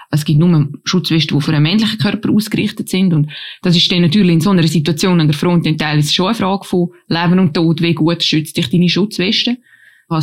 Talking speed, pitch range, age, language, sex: 230 wpm, 155-175 Hz, 20-39, German, female